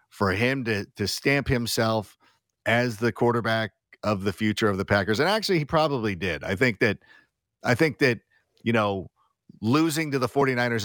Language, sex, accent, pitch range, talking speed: English, male, American, 105-140 Hz, 175 wpm